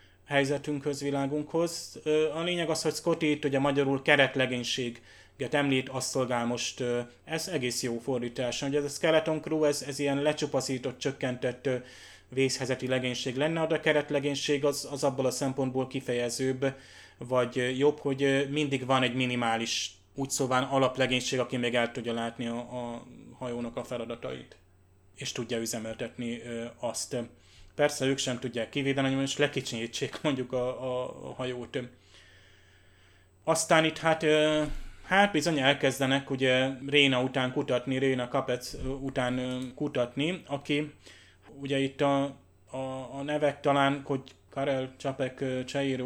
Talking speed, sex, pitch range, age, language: 135 wpm, male, 120-140 Hz, 20-39, Hungarian